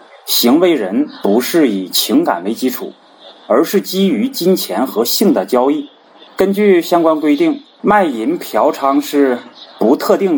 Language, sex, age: Chinese, male, 30-49